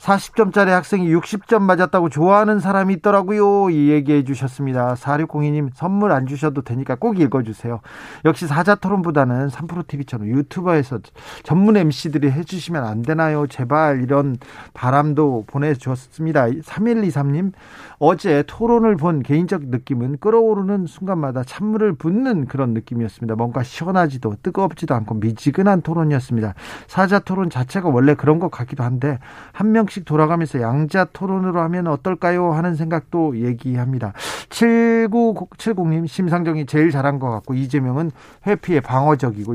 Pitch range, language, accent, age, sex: 135-180 Hz, Korean, native, 40-59, male